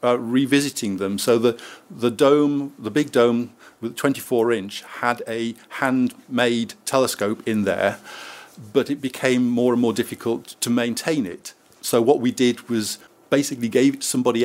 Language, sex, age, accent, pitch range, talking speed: English, male, 50-69, British, 115-135 Hz, 160 wpm